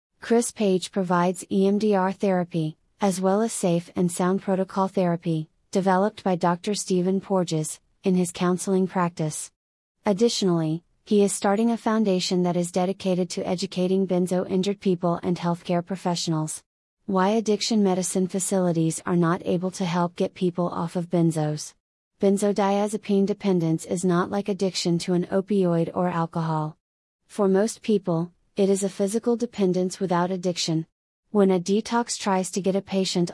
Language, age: English, 30-49